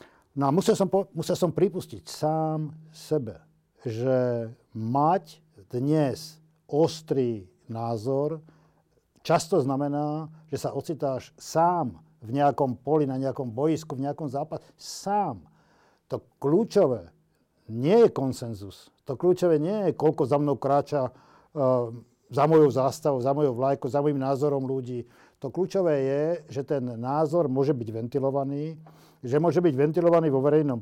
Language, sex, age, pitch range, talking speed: Slovak, male, 50-69, 130-155 Hz, 135 wpm